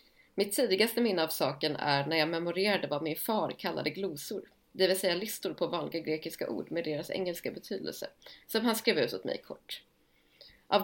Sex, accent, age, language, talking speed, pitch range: female, native, 30-49, Swedish, 190 wpm, 165-210 Hz